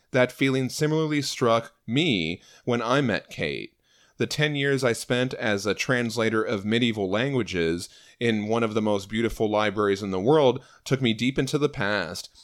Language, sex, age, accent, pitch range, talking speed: English, male, 30-49, American, 110-135 Hz, 175 wpm